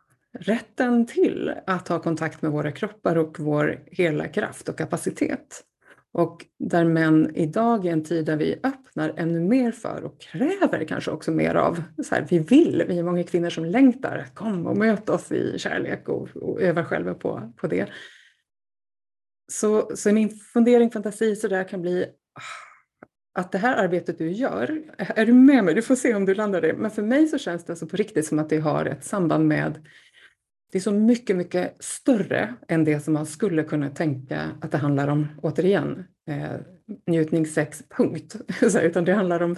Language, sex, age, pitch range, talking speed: Swedish, female, 30-49, 160-220 Hz, 190 wpm